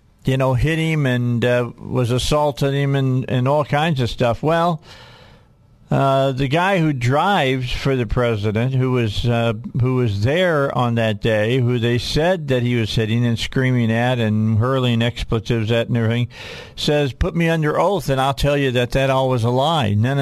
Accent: American